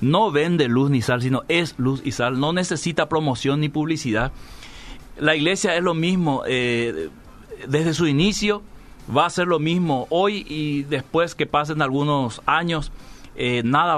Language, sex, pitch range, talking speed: Spanish, male, 135-175 Hz, 165 wpm